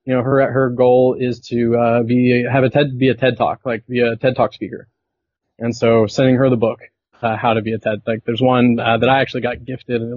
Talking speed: 260 wpm